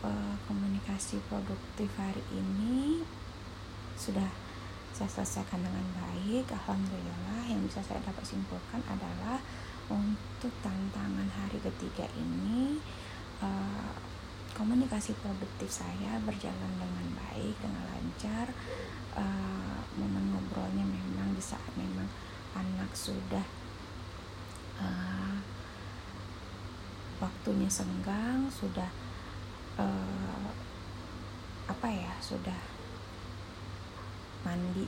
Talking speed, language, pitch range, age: 85 wpm, Indonesian, 95-105 Hz, 30-49